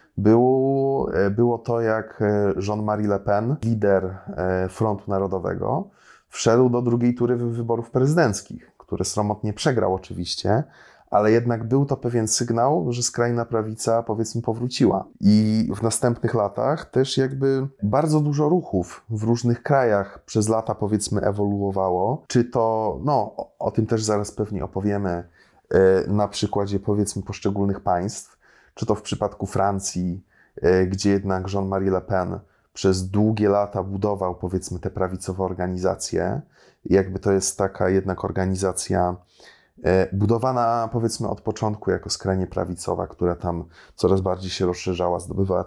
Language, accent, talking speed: Polish, native, 130 wpm